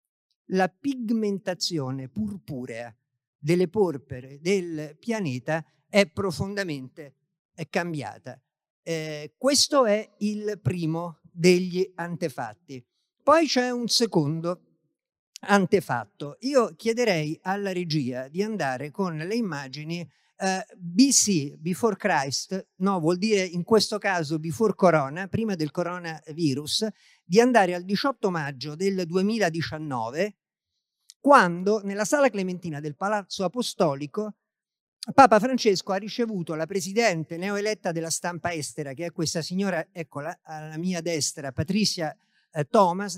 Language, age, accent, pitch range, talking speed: Italian, 50-69, native, 160-210 Hz, 110 wpm